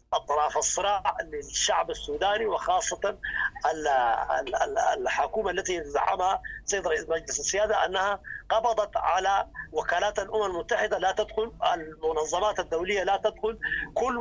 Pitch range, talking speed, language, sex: 180-225 Hz, 105 wpm, English, male